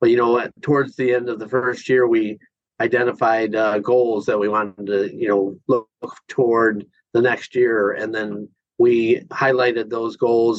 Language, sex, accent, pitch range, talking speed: English, male, American, 110-130 Hz, 180 wpm